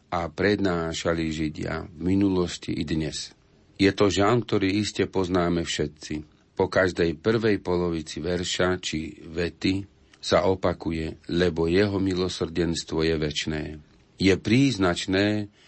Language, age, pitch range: Slovak, 50-69, 80-95 Hz